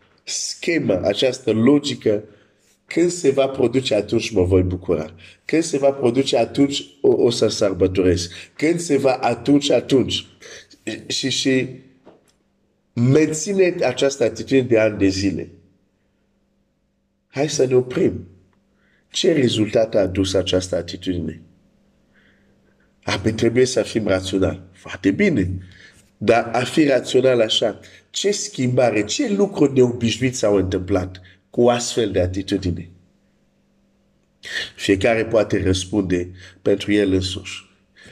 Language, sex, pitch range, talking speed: Romanian, male, 95-130 Hz, 120 wpm